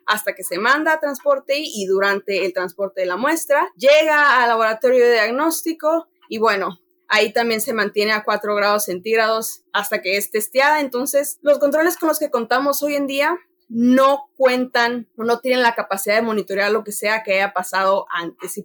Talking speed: 190 wpm